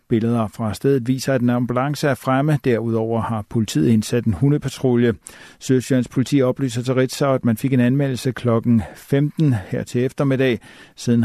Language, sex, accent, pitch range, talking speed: Danish, male, native, 115-135 Hz, 165 wpm